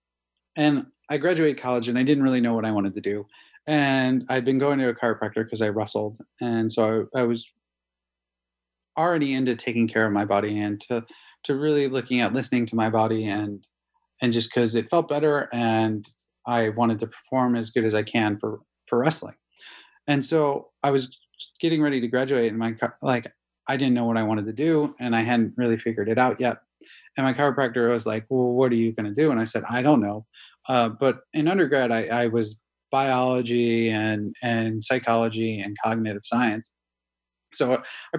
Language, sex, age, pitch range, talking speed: English, male, 30-49, 110-130 Hz, 200 wpm